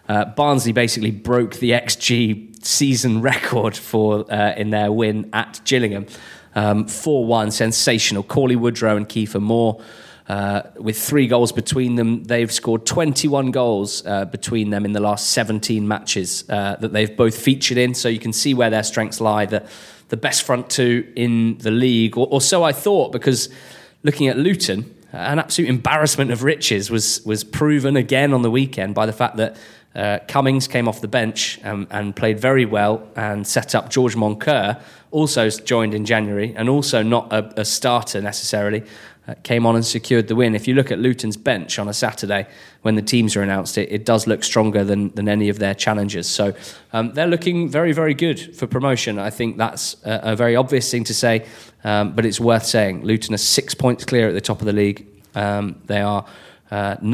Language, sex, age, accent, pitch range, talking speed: English, male, 20-39, British, 105-125 Hz, 195 wpm